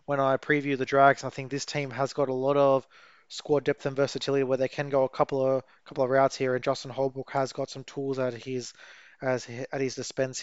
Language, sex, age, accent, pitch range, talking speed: English, male, 20-39, Australian, 130-145 Hz, 240 wpm